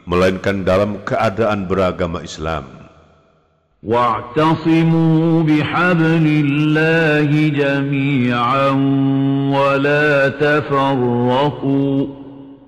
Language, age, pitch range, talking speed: Indonesian, 50-69, 125-150 Hz, 50 wpm